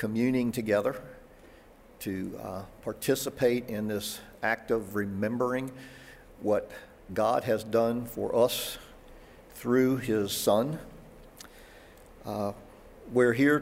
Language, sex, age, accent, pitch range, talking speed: English, male, 50-69, American, 105-130 Hz, 95 wpm